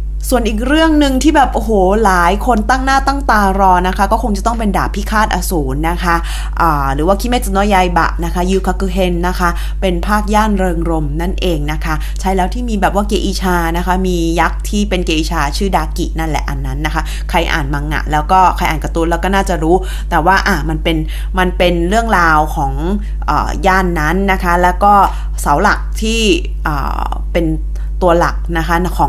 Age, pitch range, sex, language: 20-39, 170-270 Hz, female, Thai